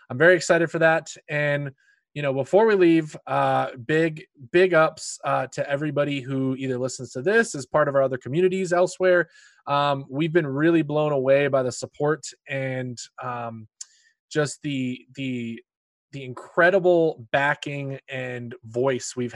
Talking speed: 155 wpm